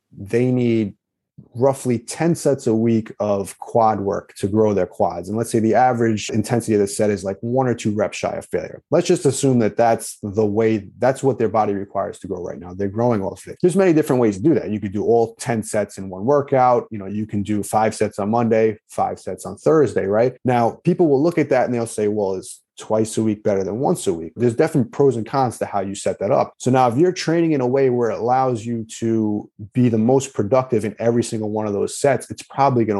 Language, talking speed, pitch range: English, 255 wpm, 105-125 Hz